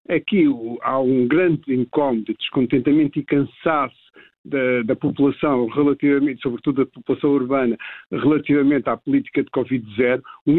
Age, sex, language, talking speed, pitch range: 50-69, male, Portuguese, 130 wpm, 130-160 Hz